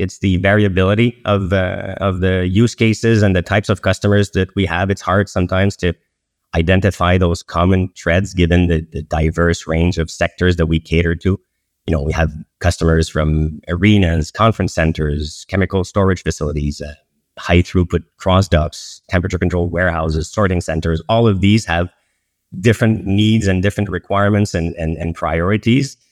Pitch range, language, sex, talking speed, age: 85-100 Hz, English, male, 165 wpm, 30-49